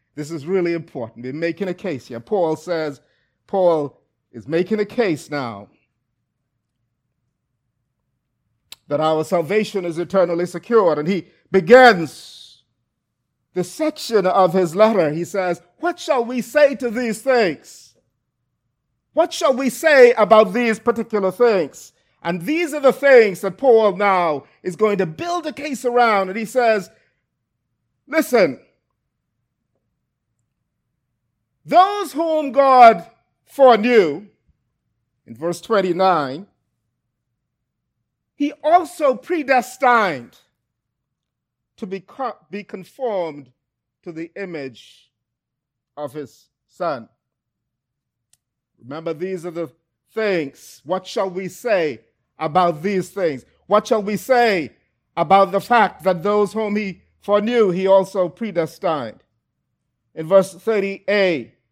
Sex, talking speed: male, 115 wpm